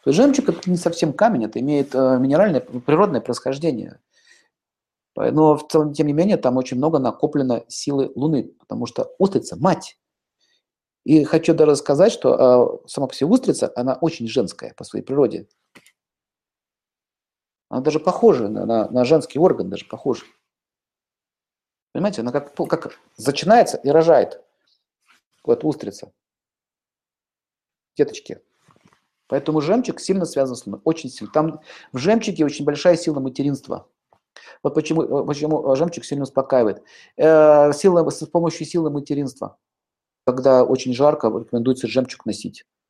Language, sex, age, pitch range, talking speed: Russian, male, 50-69, 130-165 Hz, 130 wpm